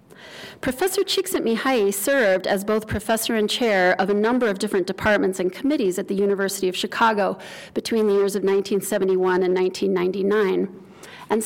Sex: female